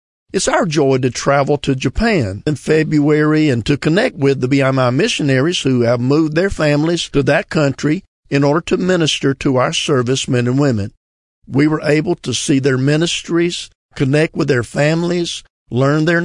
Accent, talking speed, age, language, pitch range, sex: American, 170 wpm, 50-69, English, 125-160 Hz, male